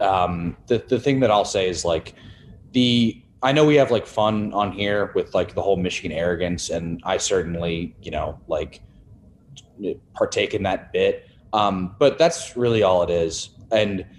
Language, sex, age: English, male, 20-39